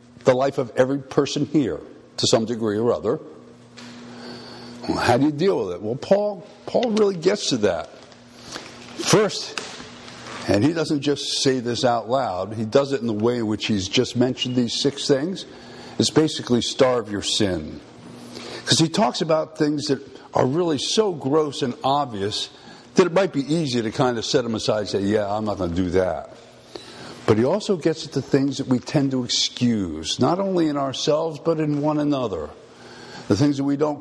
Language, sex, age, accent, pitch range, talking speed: English, male, 60-79, American, 120-155 Hz, 195 wpm